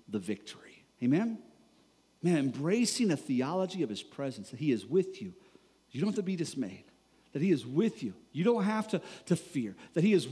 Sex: male